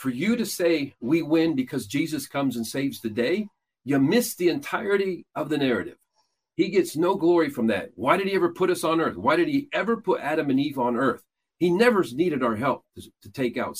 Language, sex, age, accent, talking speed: English, male, 50-69, American, 230 wpm